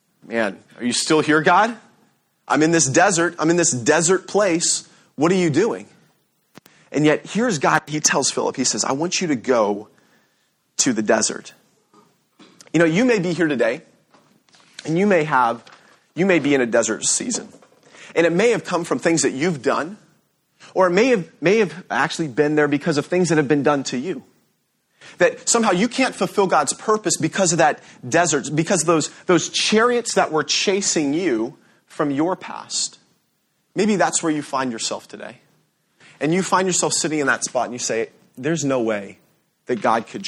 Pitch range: 145-190 Hz